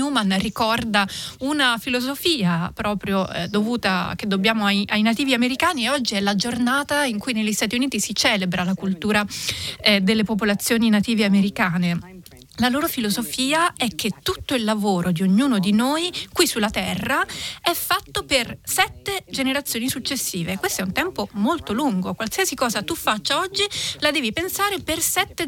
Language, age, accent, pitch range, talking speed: Italian, 30-49, native, 205-280 Hz, 160 wpm